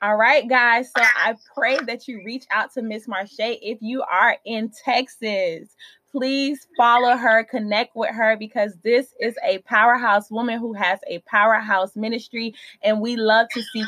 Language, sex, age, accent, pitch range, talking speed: English, female, 20-39, American, 210-255 Hz, 175 wpm